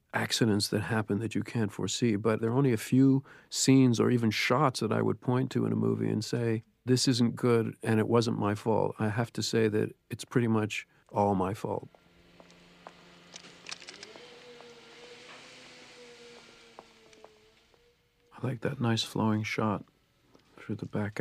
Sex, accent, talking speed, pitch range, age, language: male, American, 155 wpm, 105-120 Hz, 50-69, English